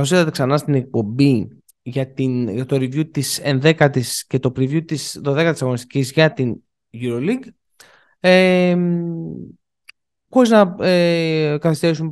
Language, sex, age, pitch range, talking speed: Greek, male, 20-39, 135-210 Hz, 125 wpm